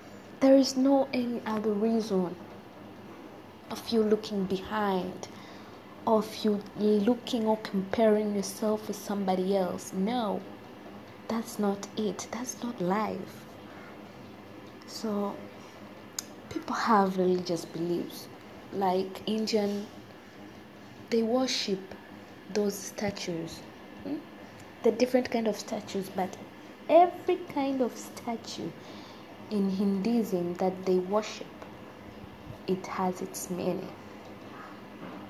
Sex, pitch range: female, 185-225 Hz